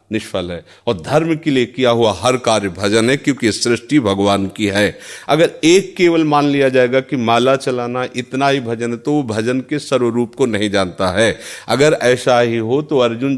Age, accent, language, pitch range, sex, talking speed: 40-59, native, Hindi, 110-150 Hz, male, 200 wpm